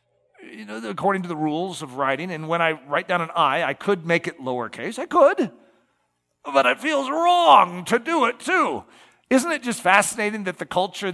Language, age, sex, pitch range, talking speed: English, 40-59, male, 165-220 Hz, 200 wpm